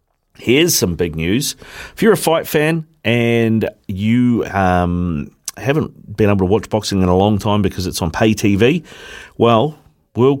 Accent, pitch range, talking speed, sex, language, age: Australian, 100-120 Hz, 165 wpm, male, English, 40-59